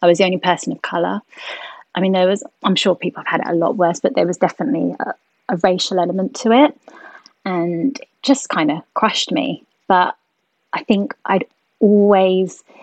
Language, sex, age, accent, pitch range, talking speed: English, female, 20-39, British, 180-215 Hz, 195 wpm